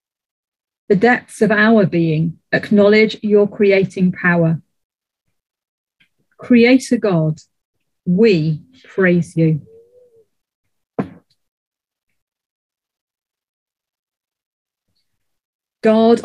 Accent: British